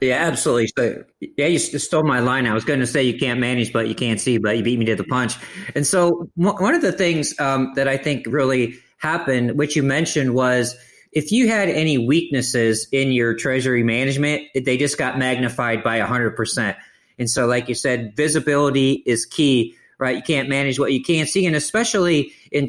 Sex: male